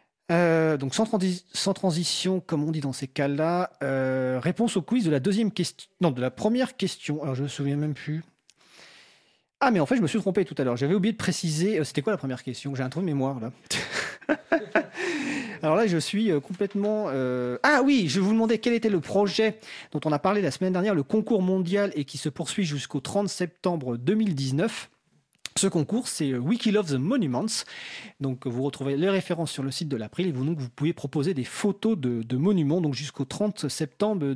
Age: 40-59